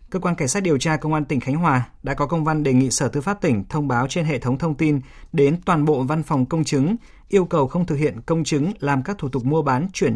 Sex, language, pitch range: male, Vietnamese, 125-160 Hz